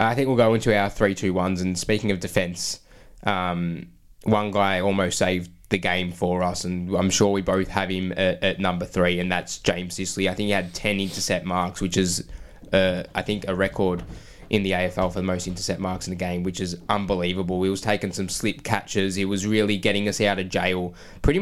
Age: 20-39